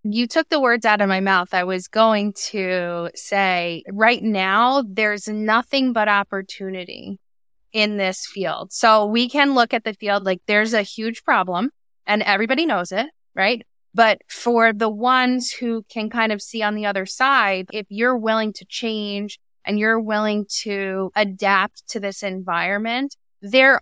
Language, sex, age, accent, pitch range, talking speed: English, female, 20-39, American, 195-240 Hz, 165 wpm